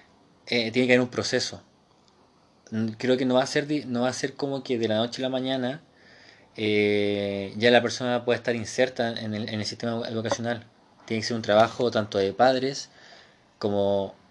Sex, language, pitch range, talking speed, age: male, Spanish, 105-130 Hz, 195 wpm, 20-39